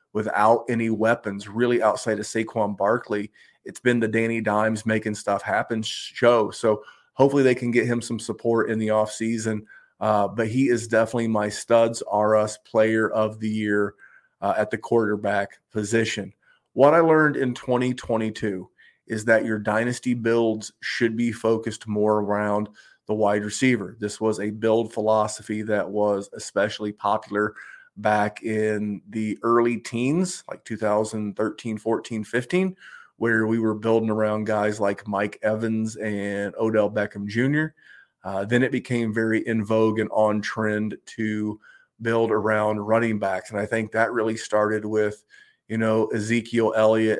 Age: 30-49